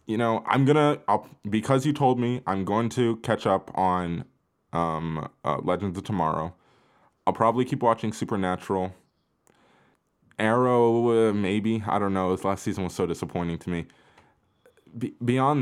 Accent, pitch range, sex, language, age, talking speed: American, 95-120 Hz, male, English, 20-39, 155 wpm